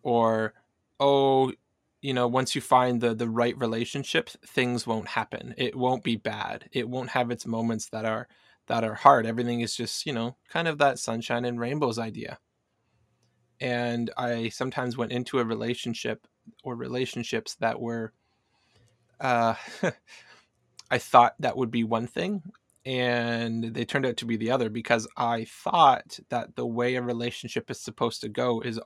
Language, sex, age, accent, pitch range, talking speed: English, male, 20-39, American, 115-125 Hz, 165 wpm